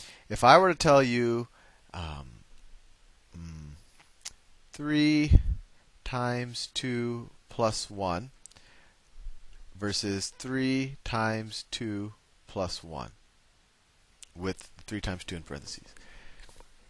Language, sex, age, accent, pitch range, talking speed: English, male, 30-49, American, 90-130 Hz, 85 wpm